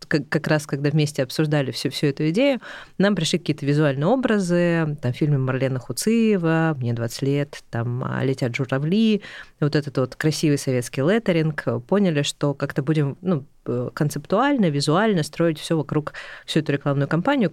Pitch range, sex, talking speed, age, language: 140-165 Hz, female, 150 wpm, 20-39, Russian